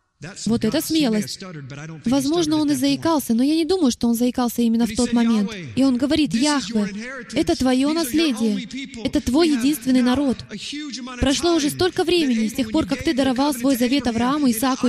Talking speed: 175 wpm